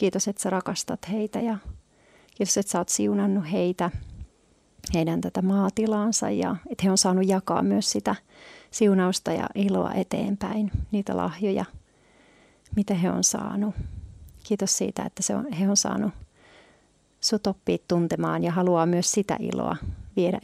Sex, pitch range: female, 185-210 Hz